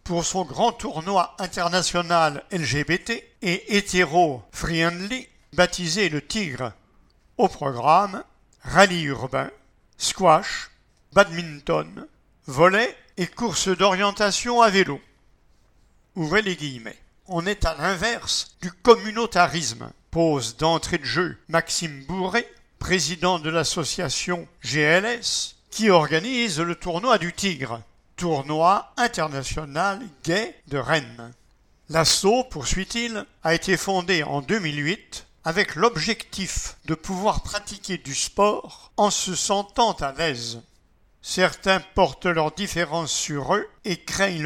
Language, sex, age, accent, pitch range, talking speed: English, male, 60-79, French, 150-195 Hz, 110 wpm